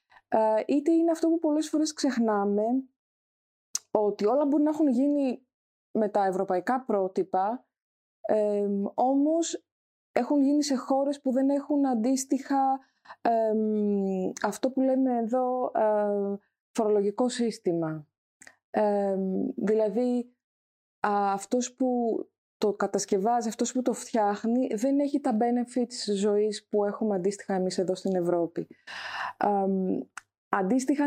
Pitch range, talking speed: 205-265 Hz, 115 wpm